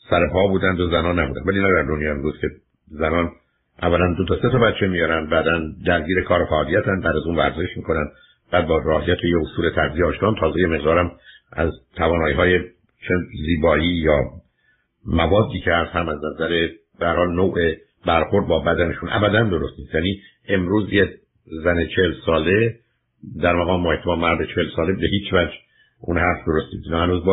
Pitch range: 80-95 Hz